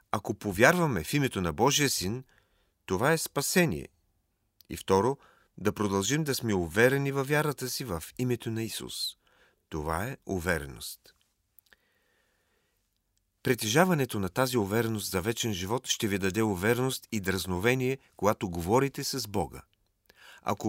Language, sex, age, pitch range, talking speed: Bulgarian, male, 40-59, 100-140 Hz, 130 wpm